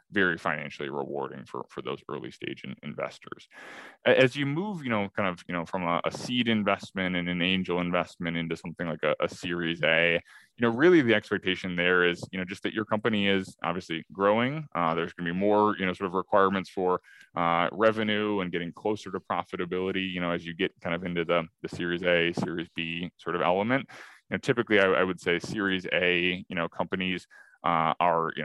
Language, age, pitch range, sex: English, 20-39, 85-105 Hz, male